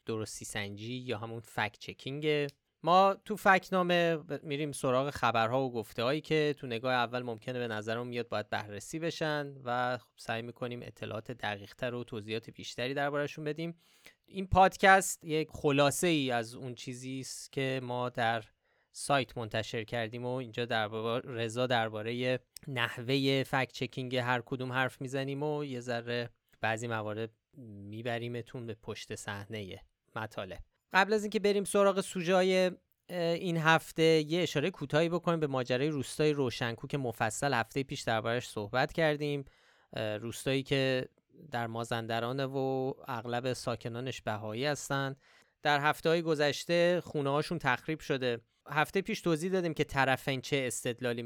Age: 20-39